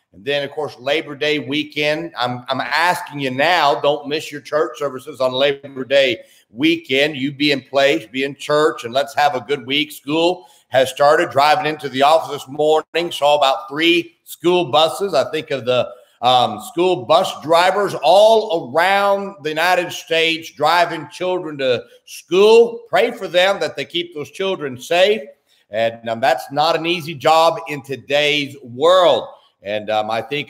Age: 50-69